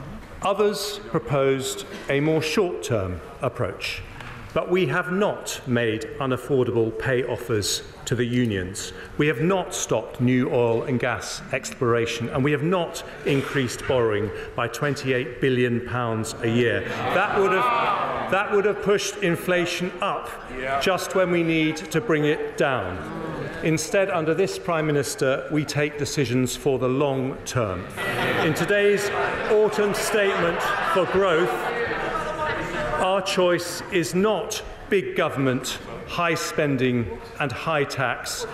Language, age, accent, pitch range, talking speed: English, 40-59, British, 135-195 Hz, 125 wpm